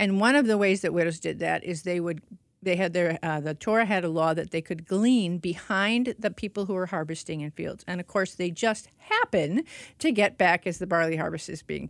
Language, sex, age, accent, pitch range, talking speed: English, female, 50-69, American, 165-220 Hz, 240 wpm